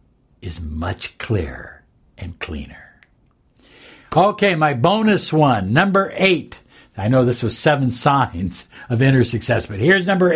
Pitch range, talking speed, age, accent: 115-170 Hz, 135 wpm, 60-79, American